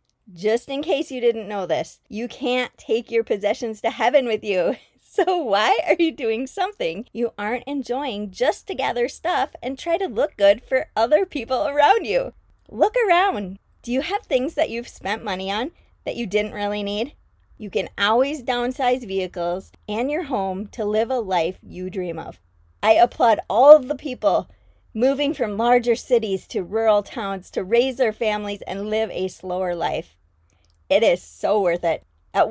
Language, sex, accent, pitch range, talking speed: English, female, American, 205-285 Hz, 180 wpm